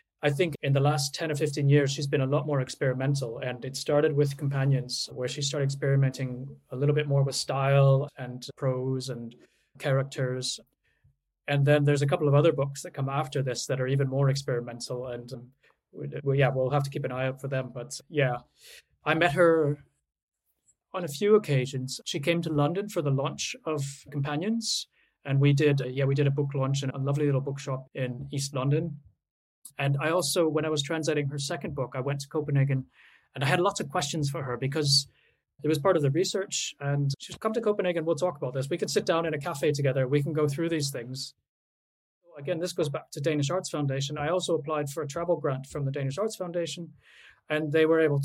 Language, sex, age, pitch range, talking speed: English, male, 20-39, 135-155 Hz, 215 wpm